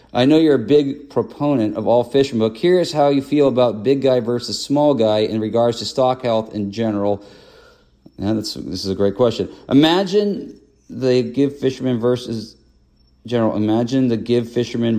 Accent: American